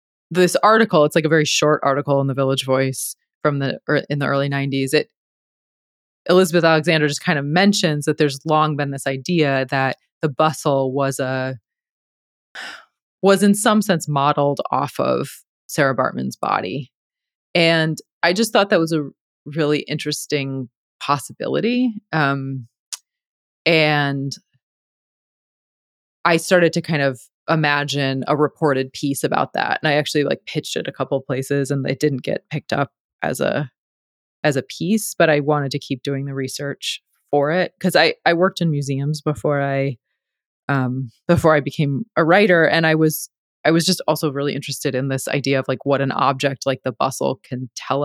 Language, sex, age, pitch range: English, female, 20-39, 135-160 Hz